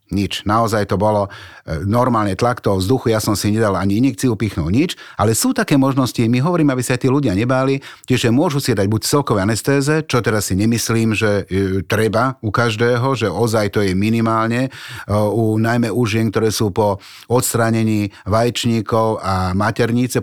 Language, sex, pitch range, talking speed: Slovak, male, 110-130 Hz, 180 wpm